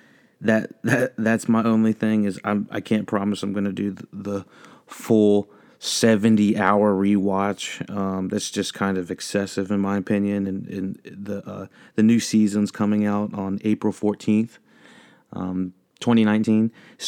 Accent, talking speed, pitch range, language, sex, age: American, 150 wpm, 95-110 Hz, English, male, 30-49